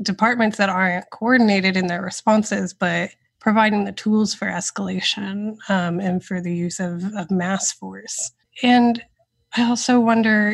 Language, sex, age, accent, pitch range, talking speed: English, female, 20-39, American, 190-230 Hz, 150 wpm